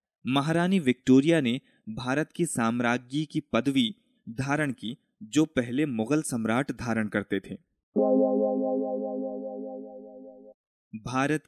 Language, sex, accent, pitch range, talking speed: Hindi, male, native, 115-140 Hz, 95 wpm